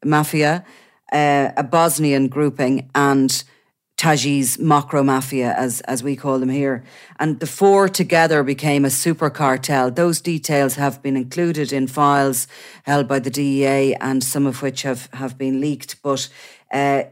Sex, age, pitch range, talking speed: female, 40-59, 135-155 Hz, 155 wpm